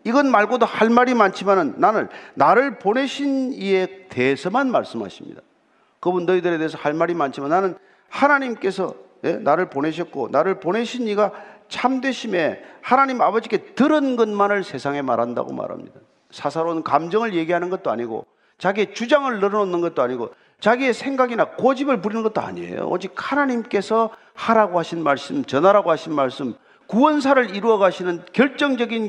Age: 40-59